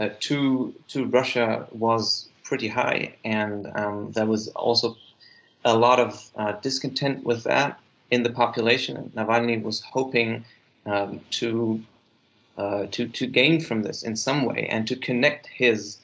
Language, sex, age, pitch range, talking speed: English, male, 30-49, 110-125 Hz, 155 wpm